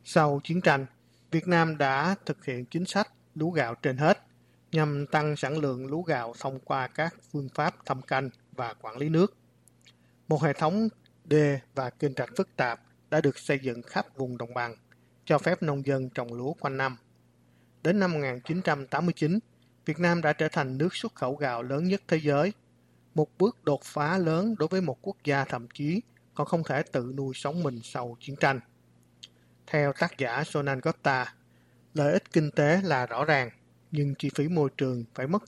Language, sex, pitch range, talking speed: Vietnamese, male, 130-160 Hz, 190 wpm